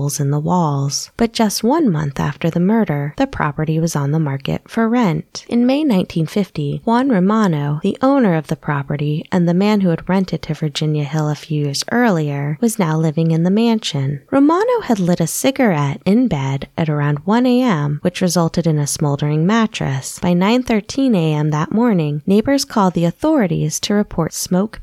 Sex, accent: female, American